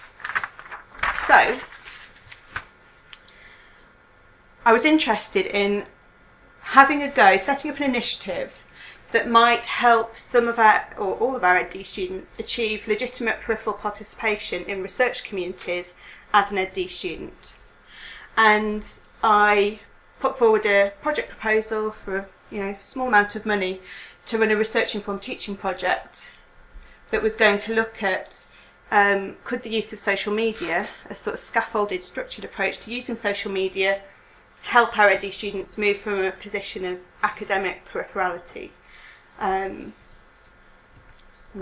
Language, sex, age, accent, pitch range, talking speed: English, female, 30-49, British, 195-225 Hz, 135 wpm